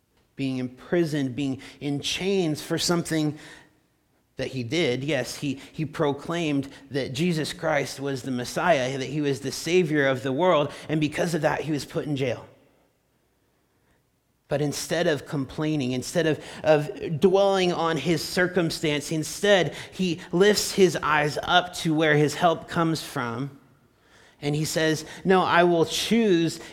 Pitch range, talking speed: 140-170 Hz, 150 wpm